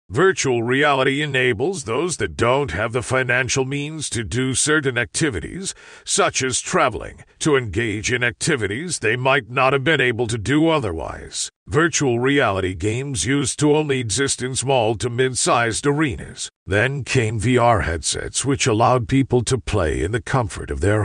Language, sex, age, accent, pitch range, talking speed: English, male, 50-69, American, 110-145 Hz, 160 wpm